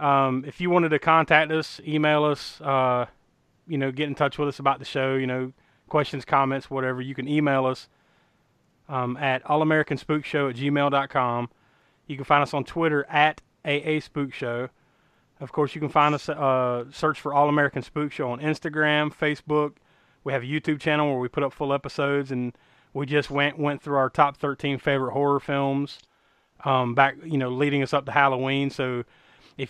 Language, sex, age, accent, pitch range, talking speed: English, male, 30-49, American, 125-145 Hz, 190 wpm